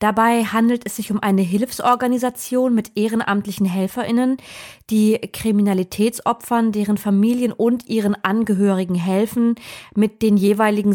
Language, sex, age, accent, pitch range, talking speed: German, female, 20-39, German, 190-225 Hz, 115 wpm